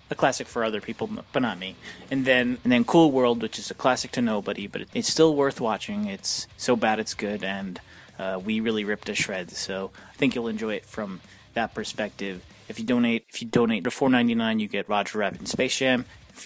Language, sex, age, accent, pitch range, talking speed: English, male, 30-49, American, 105-130 Hz, 230 wpm